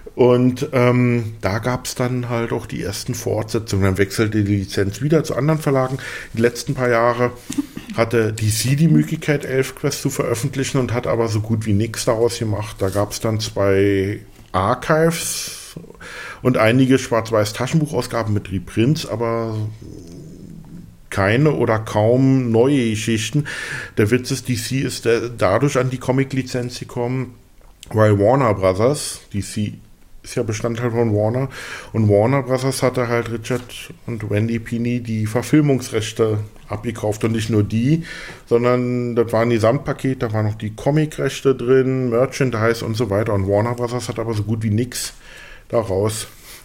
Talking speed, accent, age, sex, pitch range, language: 150 wpm, German, 50-69, male, 110-130 Hz, German